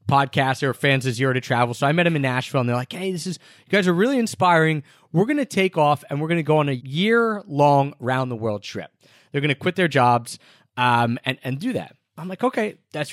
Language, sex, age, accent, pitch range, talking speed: English, male, 30-49, American, 130-180 Hz, 260 wpm